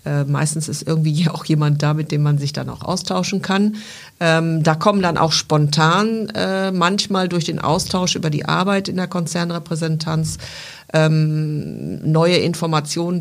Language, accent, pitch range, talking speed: German, German, 150-180 Hz, 155 wpm